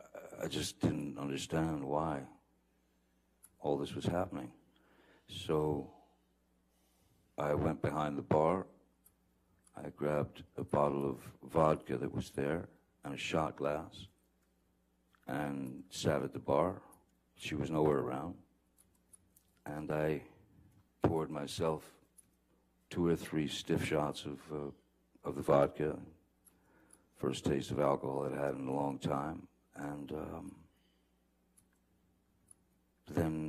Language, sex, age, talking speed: English, male, 60-79, 115 wpm